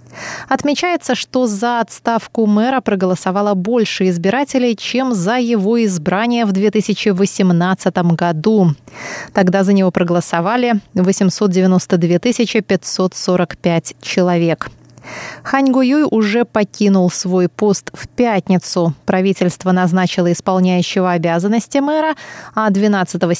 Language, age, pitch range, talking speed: Russian, 20-39, 180-235 Hz, 90 wpm